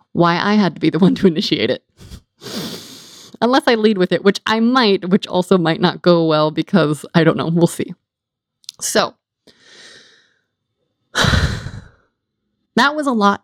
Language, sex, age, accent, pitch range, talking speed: English, female, 20-39, American, 175-205 Hz, 155 wpm